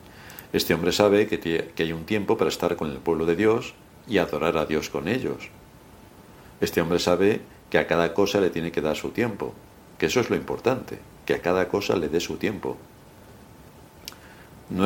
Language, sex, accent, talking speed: Spanish, male, Spanish, 190 wpm